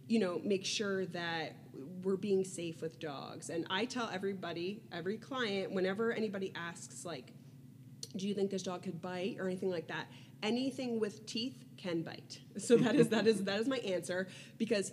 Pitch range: 165-200 Hz